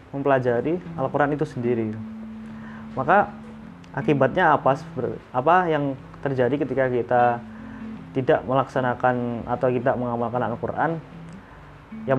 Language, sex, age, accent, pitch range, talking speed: Indonesian, male, 20-39, native, 125-160 Hz, 95 wpm